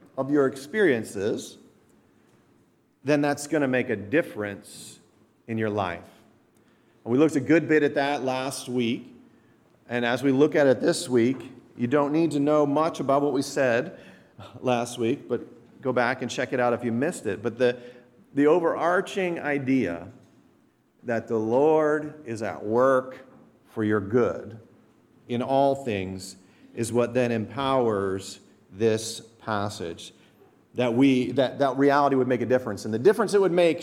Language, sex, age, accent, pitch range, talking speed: English, male, 40-59, American, 110-145 Hz, 165 wpm